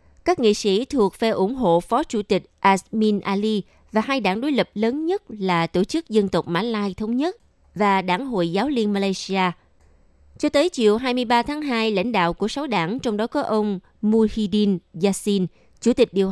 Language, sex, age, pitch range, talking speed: Vietnamese, female, 20-39, 180-225 Hz, 200 wpm